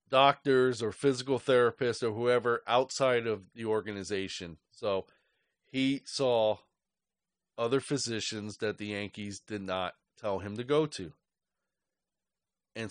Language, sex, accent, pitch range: English, male, American, 105-140 Hz